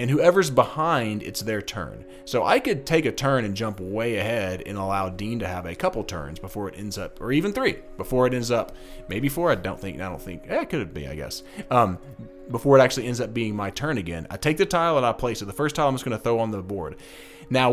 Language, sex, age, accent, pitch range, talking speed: English, male, 30-49, American, 95-130 Hz, 270 wpm